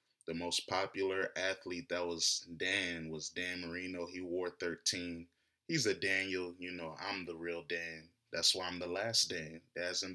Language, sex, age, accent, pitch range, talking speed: English, male, 20-39, American, 90-100 Hz, 175 wpm